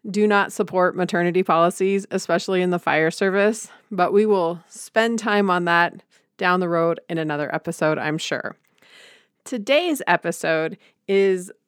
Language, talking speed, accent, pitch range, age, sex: English, 145 wpm, American, 170-205 Hz, 30-49, female